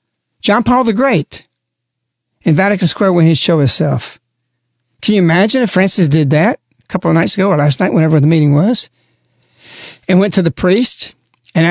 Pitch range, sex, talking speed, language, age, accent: 145-200 Hz, male, 185 wpm, English, 60-79, American